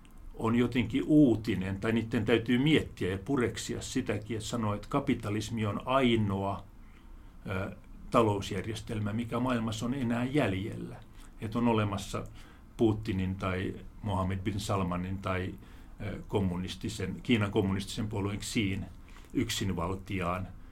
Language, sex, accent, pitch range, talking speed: Finnish, male, native, 95-115 Hz, 110 wpm